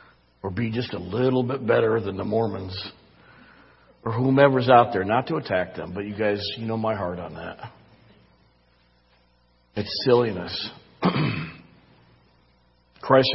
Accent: American